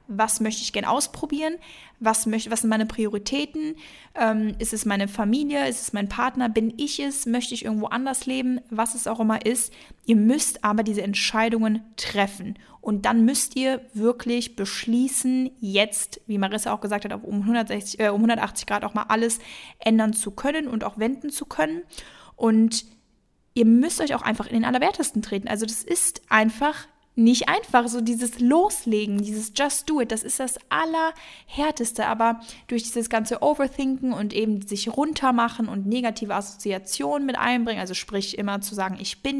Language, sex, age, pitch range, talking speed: German, female, 10-29, 215-255 Hz, 170 wpm